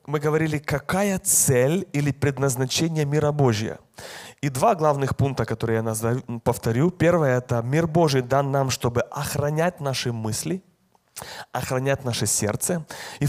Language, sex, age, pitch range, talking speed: Russian, male, 30-49, 120-150 Hz, 135 wpm